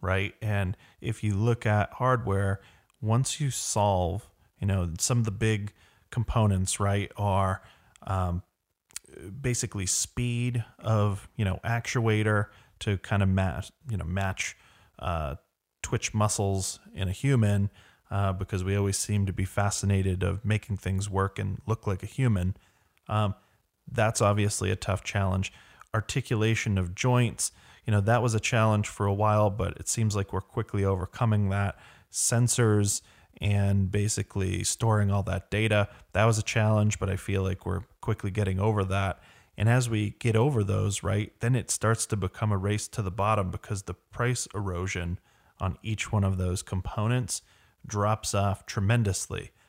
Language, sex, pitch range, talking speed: English, male, 95-110 Hz, 160 wpm